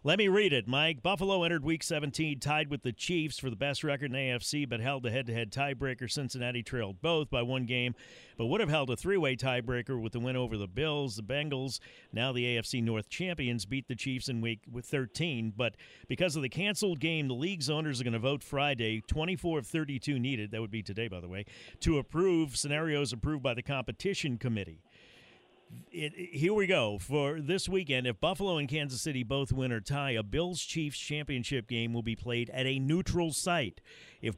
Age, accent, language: 50-69, American, English